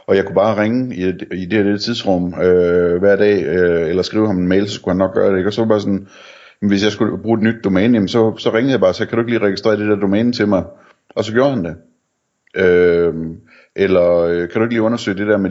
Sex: male